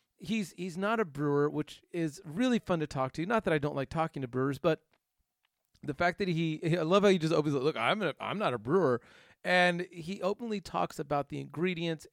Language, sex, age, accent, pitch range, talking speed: English, male, 40-59, American, 145-180 Hz, 230 wpm